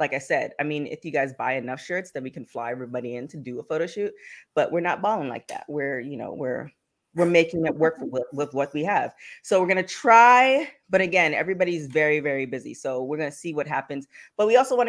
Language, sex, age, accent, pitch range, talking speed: English, female, 20-39, American, 150-200 Hz, 255 wpm